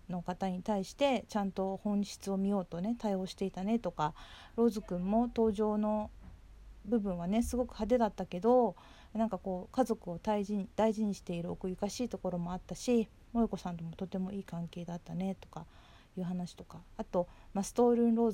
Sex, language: female, Japanese